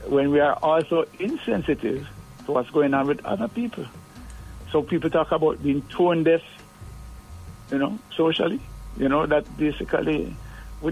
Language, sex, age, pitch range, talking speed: English, male, 60-79, 130-160 Hz, 150 wpm